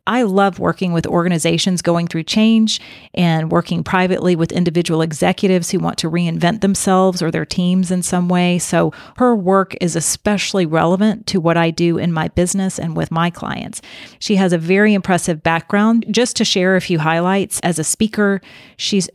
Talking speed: 180 wpm